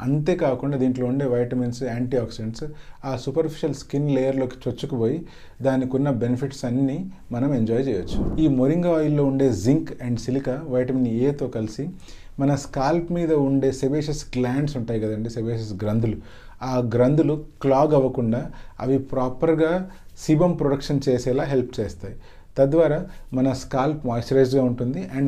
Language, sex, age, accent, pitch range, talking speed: English, male, 30-49, Indian, 125-150 Hz, 105 wpm